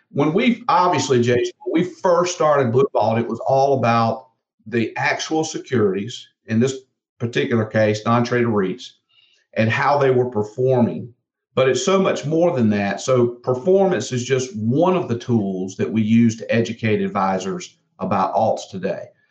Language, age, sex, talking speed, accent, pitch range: English, 50-69, male, 165 wpm, American, 115-155 Hz